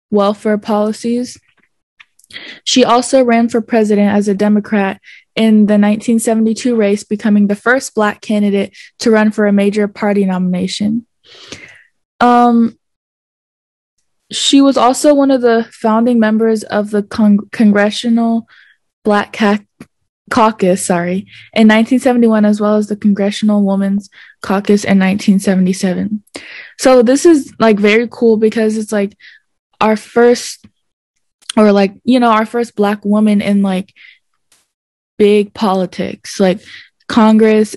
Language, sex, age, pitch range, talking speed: English, female, 20-39, 200-235 Hz, 120 wpm